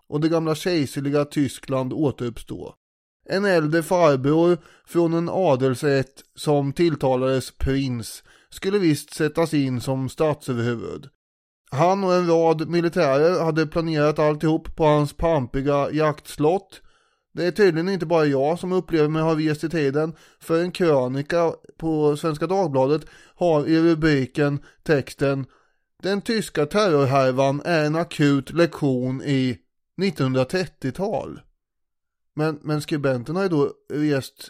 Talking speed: 120 wpm